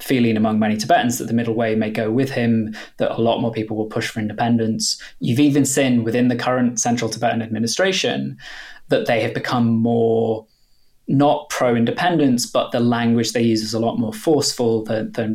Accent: British